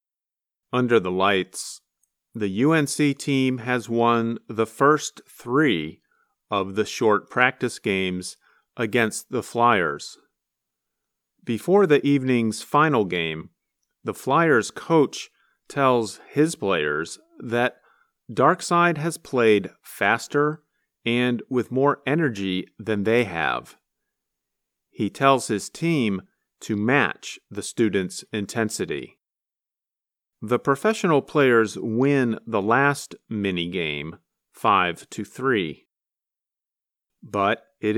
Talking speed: 100 wpm